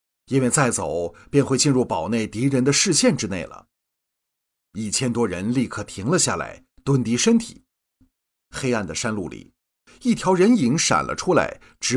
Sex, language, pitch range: male, Chinese, 110-145 Hz